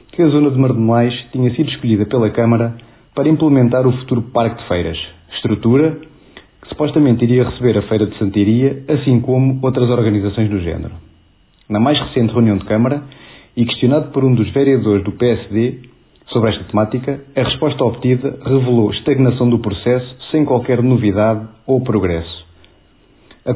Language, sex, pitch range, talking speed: Portuguese, male, 105-135 Hz, 160 wpm